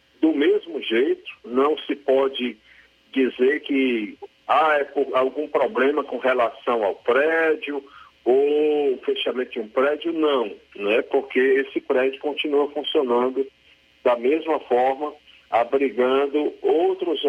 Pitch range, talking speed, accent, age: 110-160 Hz, 120 wpm, Brazilian, 40-59